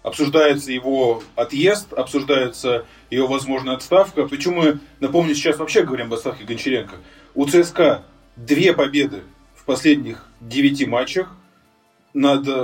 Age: 20-39